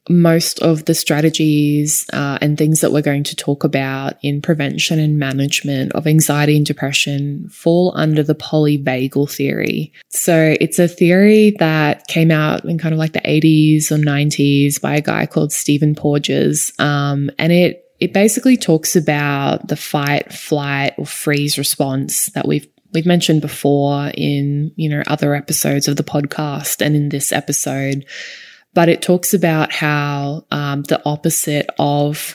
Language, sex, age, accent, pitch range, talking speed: English, female, 20-39, Australian, 145-170 Hz, 160 wpm